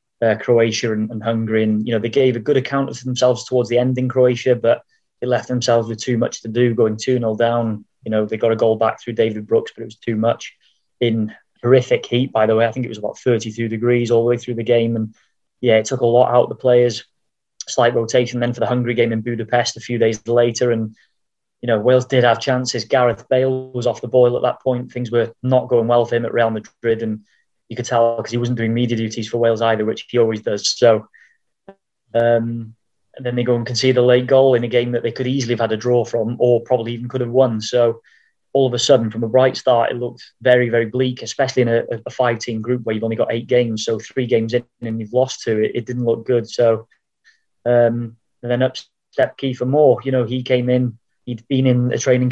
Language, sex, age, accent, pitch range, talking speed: English, male, 20-39, British, 115-125 Hz, 250 wpm